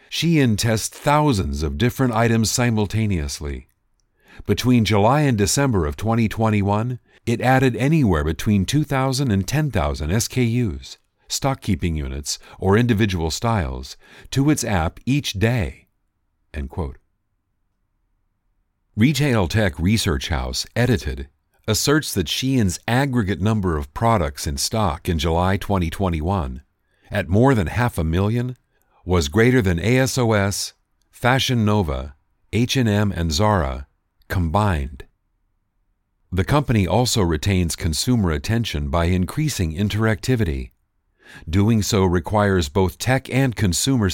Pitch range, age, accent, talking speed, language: 85-120 Hz, 50-69, American, 110 wpm, English